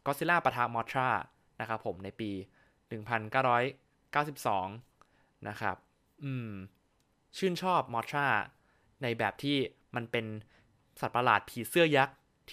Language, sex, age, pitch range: Thai, male, 20-39, 110-145 Hz